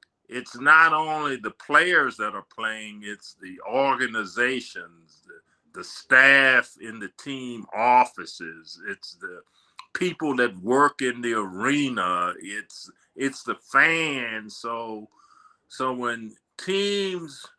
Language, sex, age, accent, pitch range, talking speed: English, male, 50-69, American, 110-145 Hz, 115 wpm